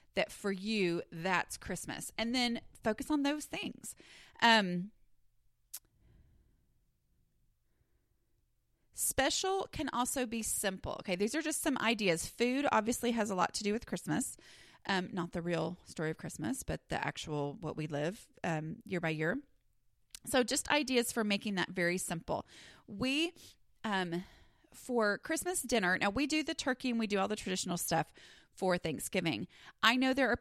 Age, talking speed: 30-49, 160 wpm